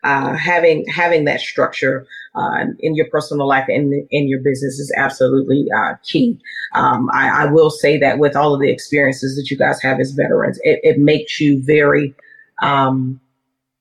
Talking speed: 180 wpm